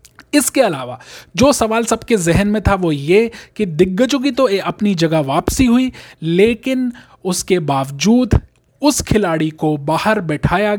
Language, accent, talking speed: Hindi, native, 145 wpm